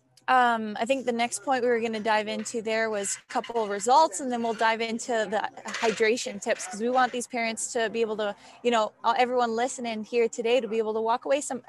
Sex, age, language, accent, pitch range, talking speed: female, 20-39, English, American, 225-290 Hz, 245 wpm